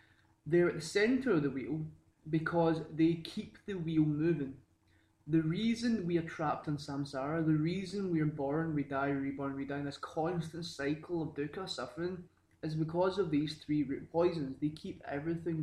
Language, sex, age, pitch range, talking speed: English, male, 20-39, 140-165 Hz, 180 wpm